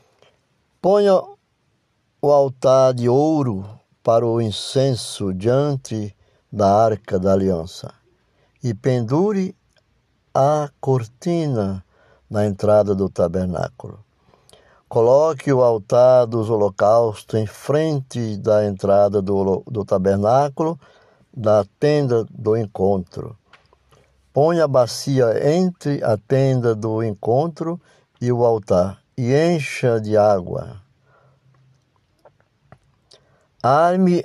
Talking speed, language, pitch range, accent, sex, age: 95 wpm, Portuguese, 110-140 Hz, Brazilian, male, 60-79